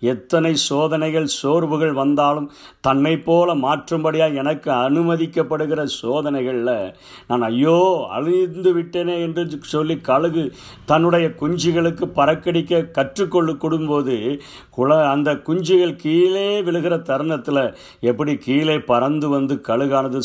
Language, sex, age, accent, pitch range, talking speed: Tamil, male, 50-69, native, 125-160 Hz, 90 wpm